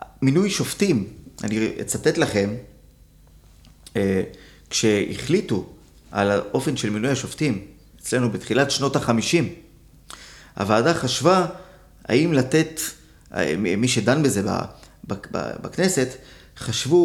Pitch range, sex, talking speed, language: 110-150 Hz, male, 85 wpm, Hebrew